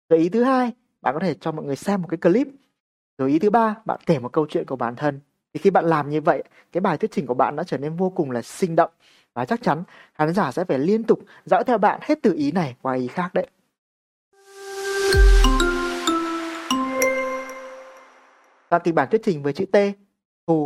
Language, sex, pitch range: Vietnamese, male, 150-210 Hz